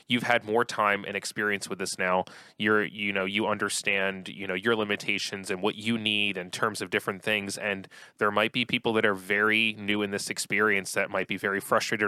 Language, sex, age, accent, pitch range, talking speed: English, male, 20-39, American, 95-110 Hz, 220 wpm